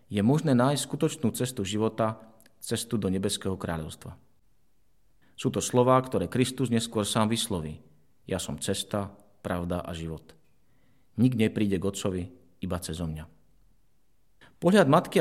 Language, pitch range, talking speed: Slovak, 100-125 Hz, 135 wpm